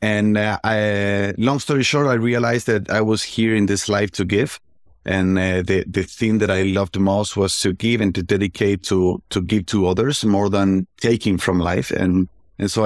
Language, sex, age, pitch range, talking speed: English, male, 30-49, 95-115 Hz, 210 wpm